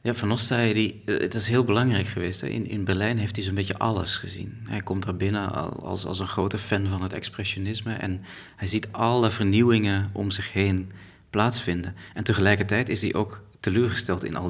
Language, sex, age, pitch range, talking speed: Dutch, male, 40-59, 95-115 Hz, 205 wpm